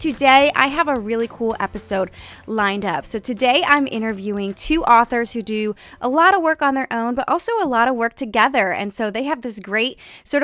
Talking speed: 220 wpm